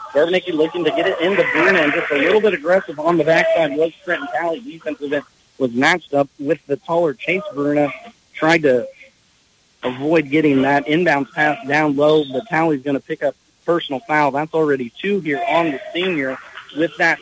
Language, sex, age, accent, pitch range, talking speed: English, male, 40-59, American, 155-195 Hz, 190 wpm